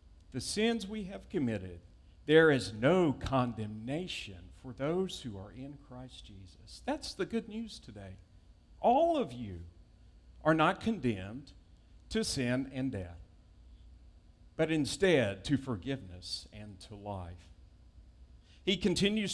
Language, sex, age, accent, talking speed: English, male, 50-69, American, 125 wpm